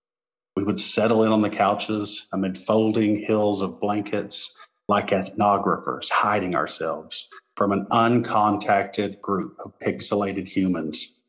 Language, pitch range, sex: English, 105-125 Hz, male